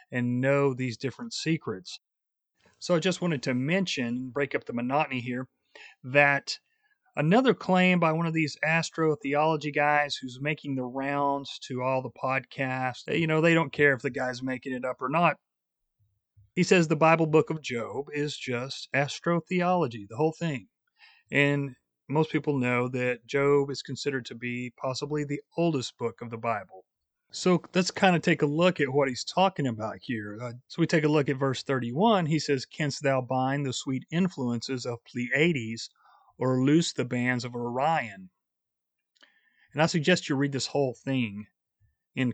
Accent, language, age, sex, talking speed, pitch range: American, English, 40-59, male, 175 wpm, 125-160 Hz